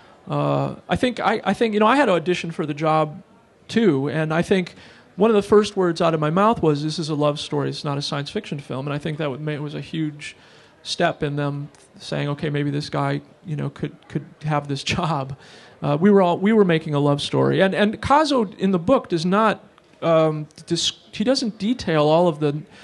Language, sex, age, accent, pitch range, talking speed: English, male, 40-59, American, 150-185 Hz, 240 wpm